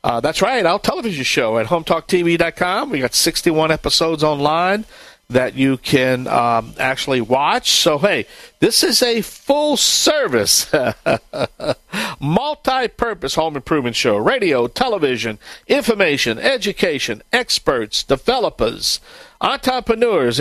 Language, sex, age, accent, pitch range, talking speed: English, male, 60-79, American, 130-185 Hz, 105 wpm